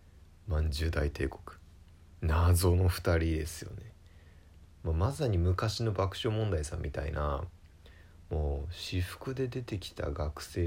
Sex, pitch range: male, 80-95 Hz